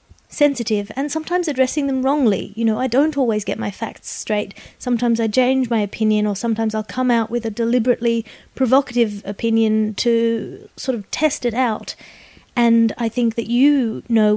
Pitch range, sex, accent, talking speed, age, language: 215-245 Hz, female, Australian, 175 wpm, 30-49, English